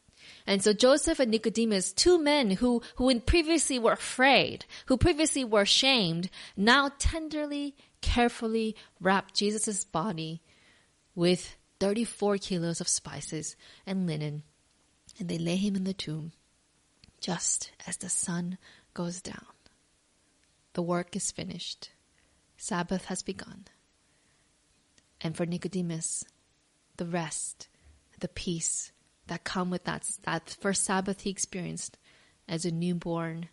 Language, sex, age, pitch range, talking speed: English, female, 20-39, 170-205 Hz, 120 wpm